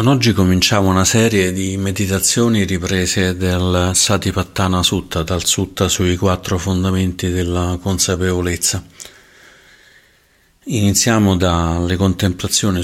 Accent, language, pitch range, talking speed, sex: native, Italian, 90-100 Hz, 100 wpm, male